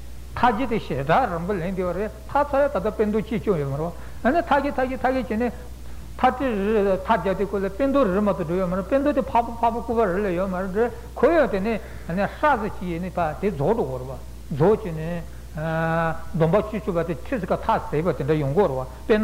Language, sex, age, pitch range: Italian, male, 60-79, 170-235 Hz